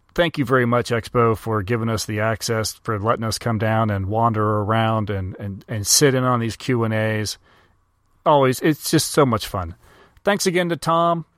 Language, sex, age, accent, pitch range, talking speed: English, male, 40-59, American, 115-150 Hz, 185 wpm